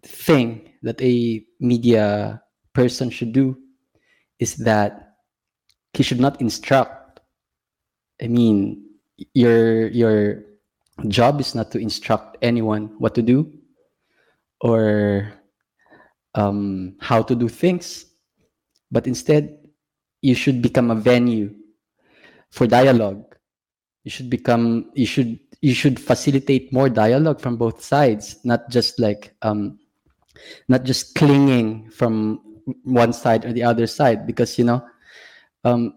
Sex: male